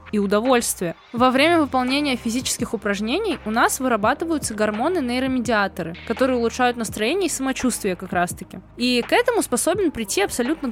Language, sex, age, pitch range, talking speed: Russian, female, 20-39, 225-295 Hz, 140 wpm